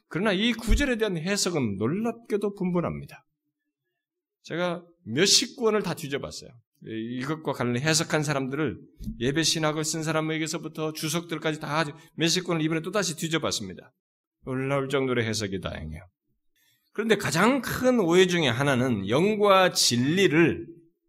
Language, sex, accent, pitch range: Korean, male, native, 120-200 Hz